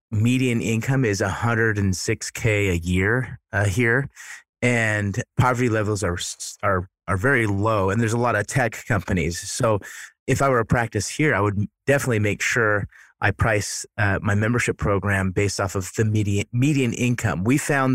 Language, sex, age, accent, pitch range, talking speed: English, male, 30-49, American, 100-125 Hz, 165 wpm